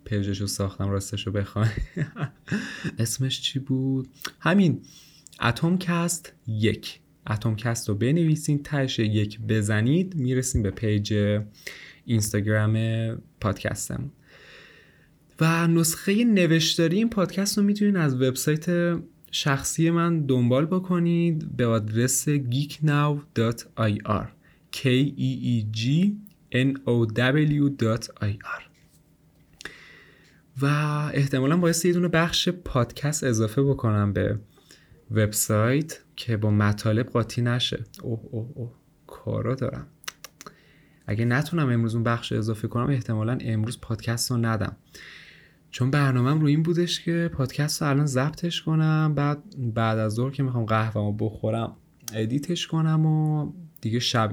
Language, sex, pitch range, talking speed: Persian, male, 110-155 Hz, 105 wpm